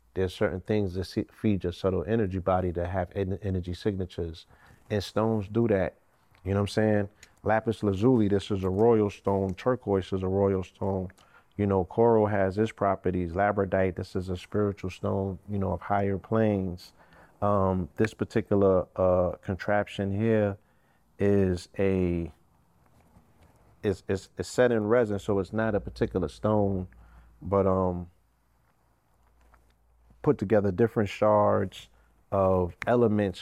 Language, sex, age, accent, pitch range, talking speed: English, male, 40-59, American, 90-105 Hz, 145 wpm